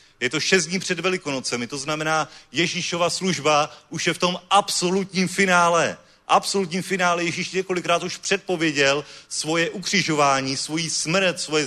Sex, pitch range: male, 155-200 Hz